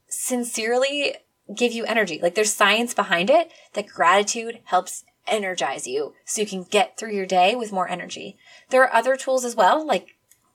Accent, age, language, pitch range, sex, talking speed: American, 20-39, English, 205-275 Hz, female, 175 wpm